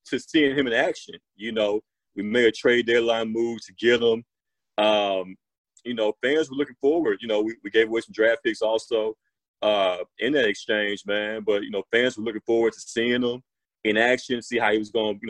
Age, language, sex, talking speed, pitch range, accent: 30-49, English, male, 220 wpm, 110-135 Hz, American